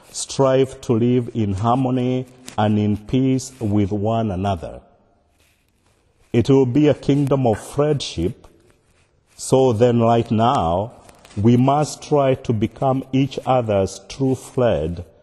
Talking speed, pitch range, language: 120 wpm, 100-130 Hz, English